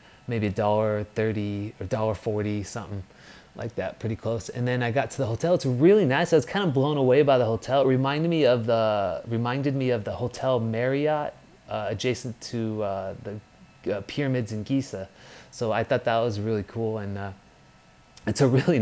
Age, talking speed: 30-49, 200 wpm